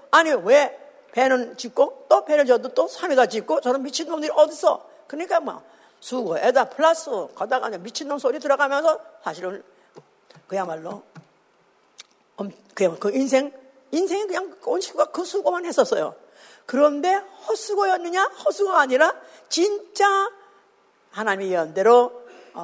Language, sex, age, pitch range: Korean, female, 50-69, 235-350 Hz